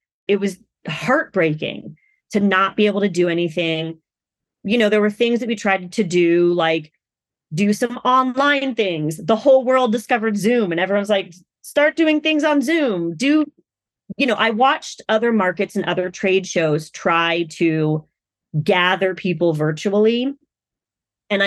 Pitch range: 170-220 Hz